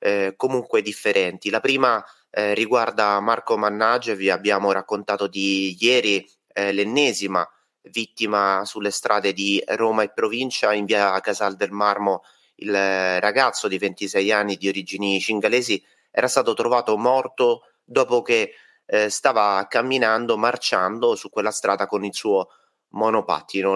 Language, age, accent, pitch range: Italian, 30-49, native, 100-125 Hz